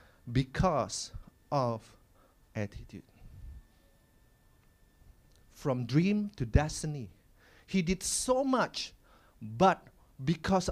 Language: English